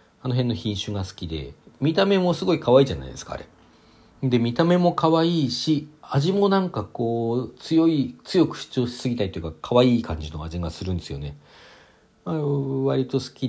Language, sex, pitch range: Japanese, male, 85-120 Hz